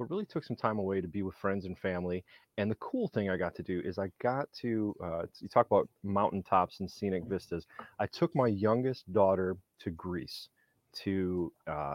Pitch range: 90-115 Hz